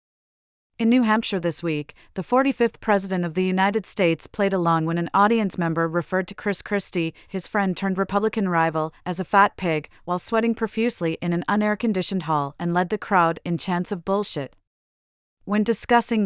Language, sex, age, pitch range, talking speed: English, female, 40-59, 165-205 Hz, 180 wpm